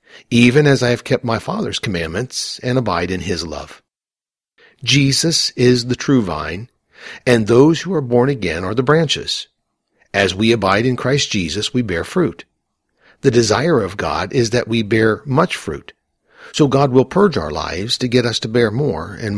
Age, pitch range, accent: 50-69, 100-135 Hz, American